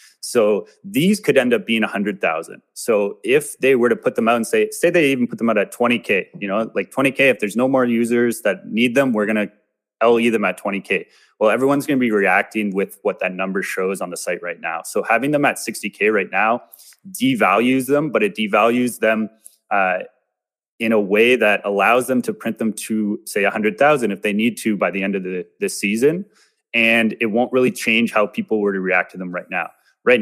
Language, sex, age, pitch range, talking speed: Filipino, male, 30-49, 105-135 Hz, 220 wpm